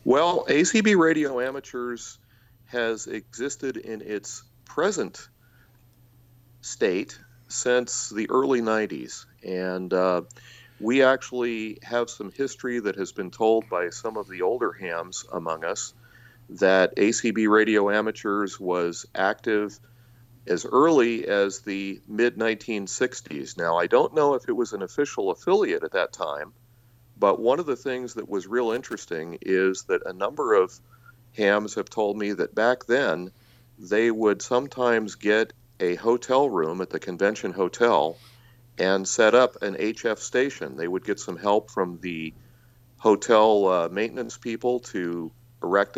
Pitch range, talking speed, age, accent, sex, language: 100-120 Hz, 140 wpm, 40-59, American, male, English